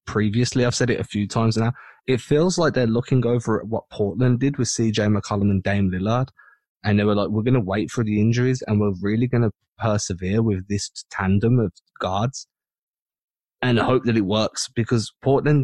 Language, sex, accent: English, male, British